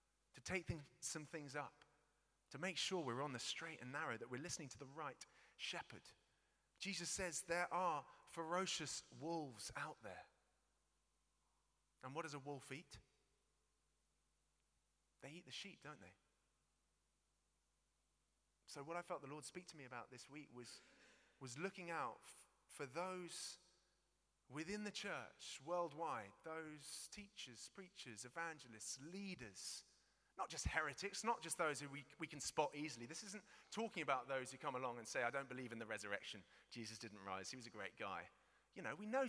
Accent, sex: British, male